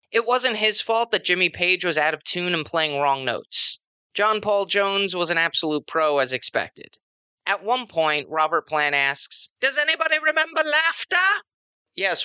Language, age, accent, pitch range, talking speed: English, 30-49, American, 140-195 Hz, 170 wpm